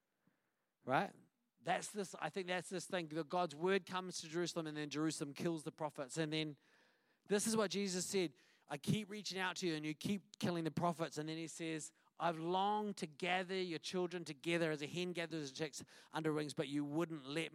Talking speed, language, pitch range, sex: 210 wpm, English, 155-185 Hz, male